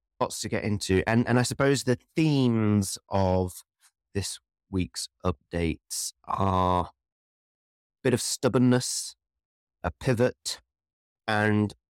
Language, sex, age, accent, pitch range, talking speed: English, male, 30-49, British, 90-110 Hz, 110 wpm